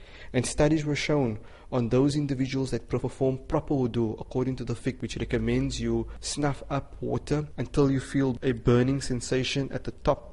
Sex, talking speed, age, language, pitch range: male, 175 wpm, 30-49, English, 115-135 Hz